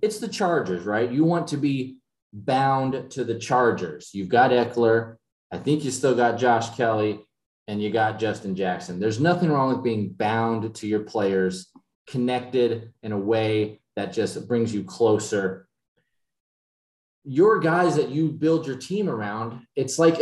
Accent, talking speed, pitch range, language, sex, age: American, 165 wpm, 110-140 Hz, English, male, 20-39